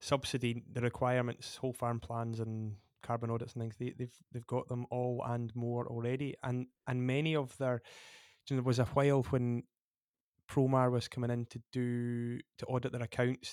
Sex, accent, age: male, British, 20-39